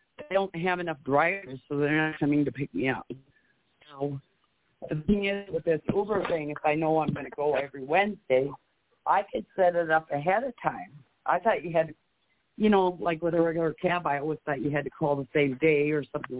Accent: American